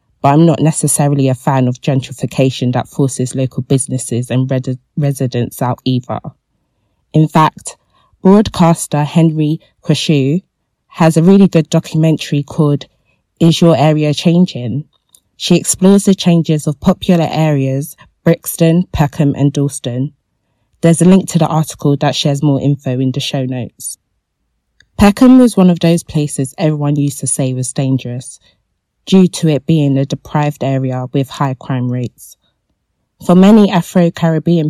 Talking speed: 140 wpm